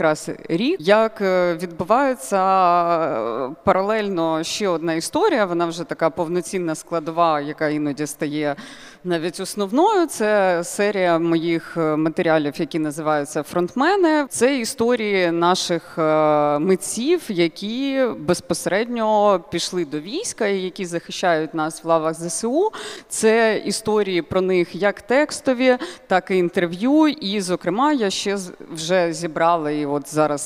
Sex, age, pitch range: female, 30-49, 160-205 Hz